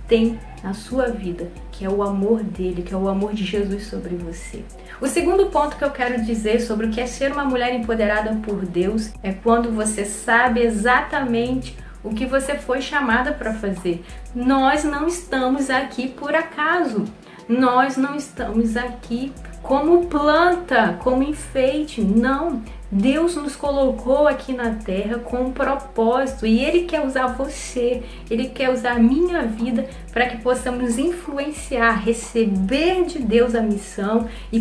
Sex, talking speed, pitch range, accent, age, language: female, 160 wpm, 225-285 Hz, Brazilian, 30-49, Portuguese